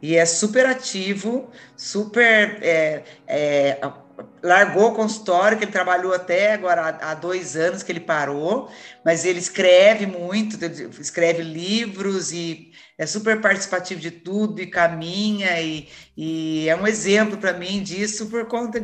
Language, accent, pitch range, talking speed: Portuguese, Brazilian, 170-210 Hz, 135 wpm